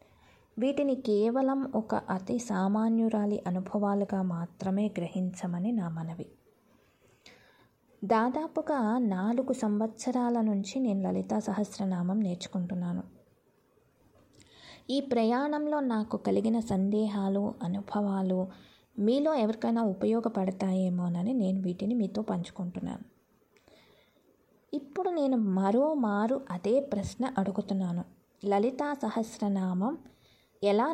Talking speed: 80 wpm